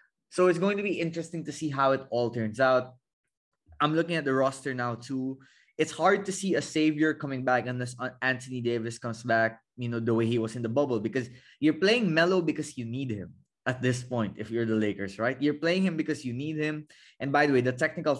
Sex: male